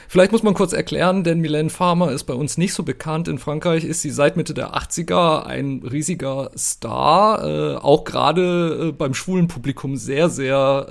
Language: German